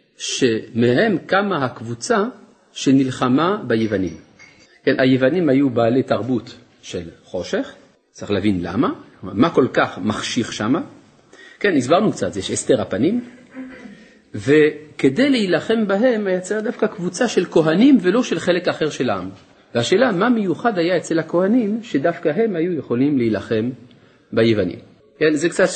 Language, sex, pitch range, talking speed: Hebrew, male, 120-190 Hz, 130 wpm